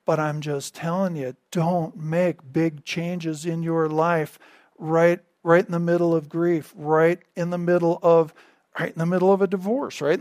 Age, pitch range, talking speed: 50-69, 150-185 Hz, 190 wpm